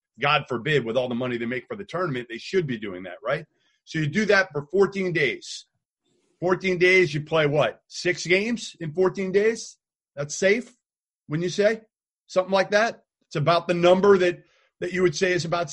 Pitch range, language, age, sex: 130-180 Hz, English, 30-49, male